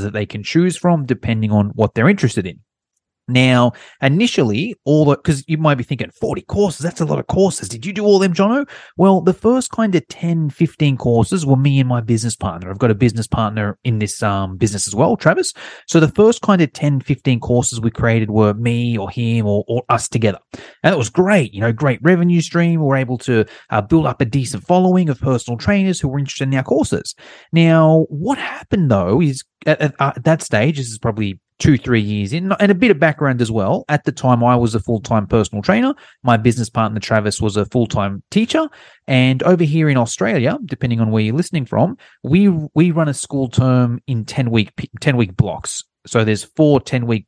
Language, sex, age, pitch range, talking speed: English, male, 30-49, 115-160 Hz, 220 wpm